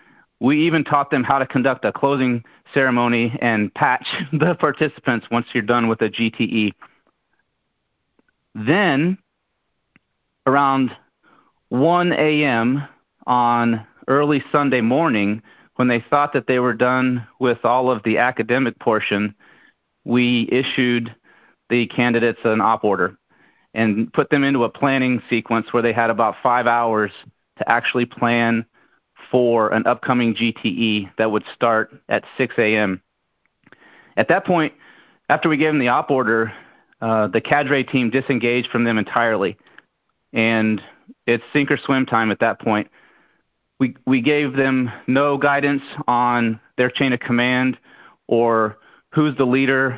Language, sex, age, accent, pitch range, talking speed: English, male, 40-59, American, 115-135 Hz, 140 wpm